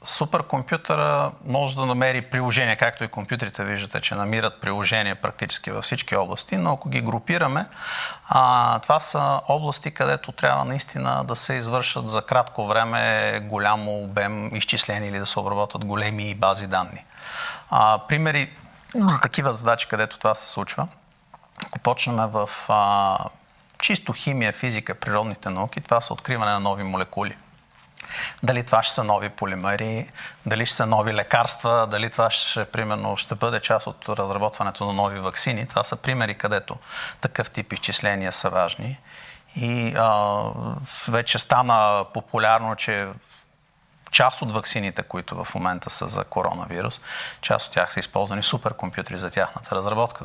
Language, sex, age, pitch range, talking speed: Bulgarian, male, 40-59, 100-120 Hz, 145 wpm